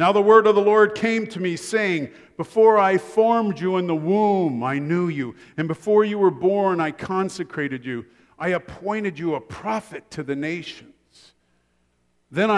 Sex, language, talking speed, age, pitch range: male, English, 175 wpm, 50-69, 140-195 Hz